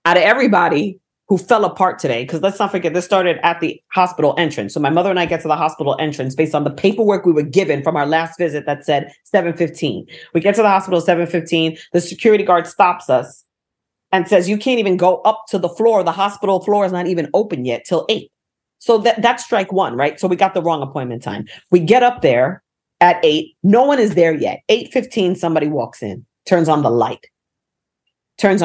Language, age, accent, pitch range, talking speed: English, 40-59, American, 160-210 Hz, 220 wpm